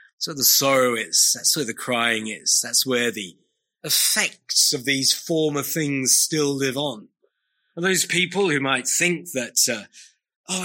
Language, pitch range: English, 120-160 Hz